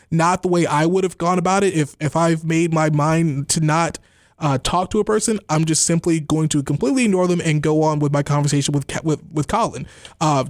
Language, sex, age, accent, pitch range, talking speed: English, male, 20-39, American, 130-180 Hz, 235 wpm